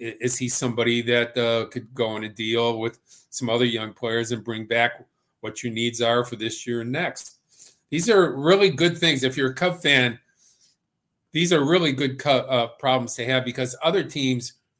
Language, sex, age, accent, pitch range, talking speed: English, male, 50-69, American, 115-140 Hz, 195 wpm